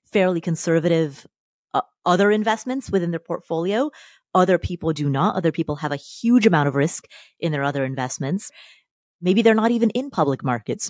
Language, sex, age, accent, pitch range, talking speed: English, female, 30-49, American, 160-200 Hz, 170 wpm